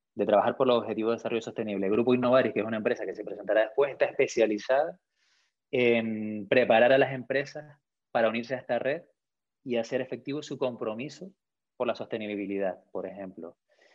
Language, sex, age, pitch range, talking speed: Spanish, male, 20-39, 110-130 Hz, 175 wpm